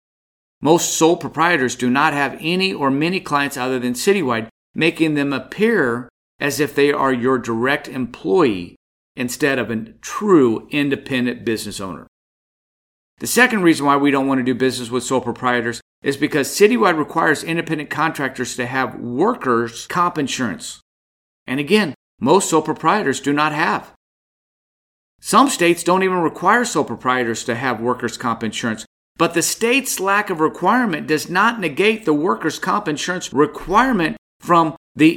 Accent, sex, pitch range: American, male, 125-170 Hz